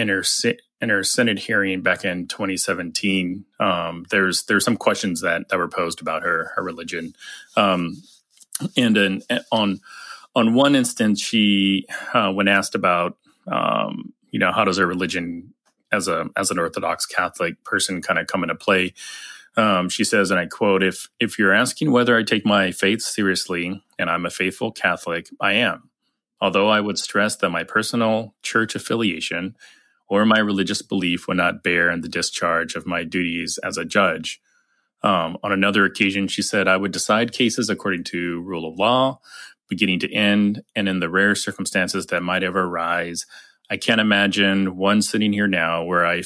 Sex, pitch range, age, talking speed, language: male, 90-105 Hz, 30-49, 180 wpm, English